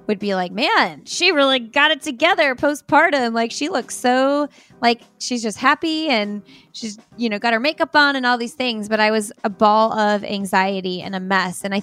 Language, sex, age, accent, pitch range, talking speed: English, female, 20-39, American, 200-250 Hz, 215 wpm